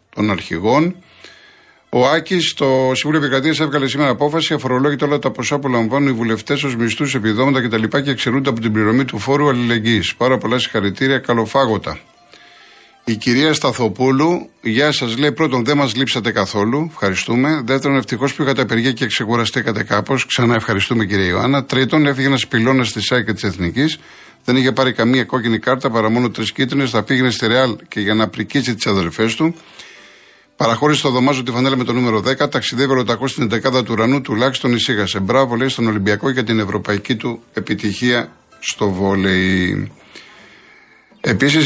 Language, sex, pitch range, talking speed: Greek, male, 110-140 Hz, 165 wpm